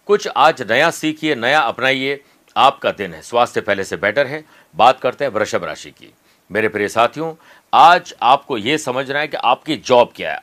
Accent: native